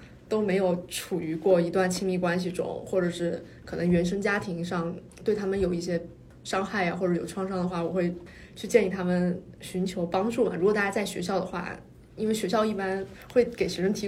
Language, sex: Chinese, female